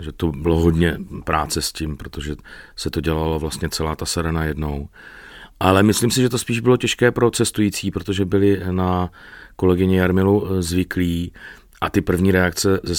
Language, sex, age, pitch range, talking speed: Czech, male, 30-49, 80-90 Hz, 170 wpm